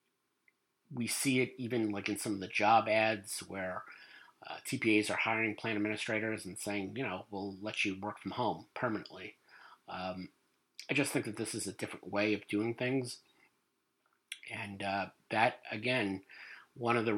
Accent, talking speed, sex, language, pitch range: American, 170 wpm, male, English, 100-125 Hz